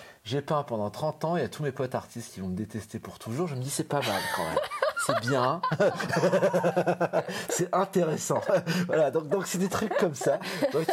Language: French